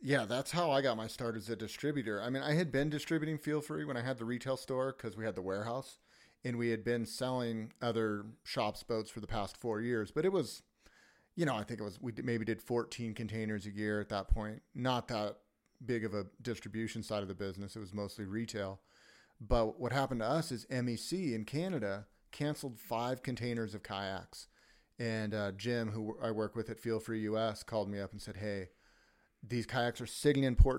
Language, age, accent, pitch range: English, 40-59, American, 105-120 Hz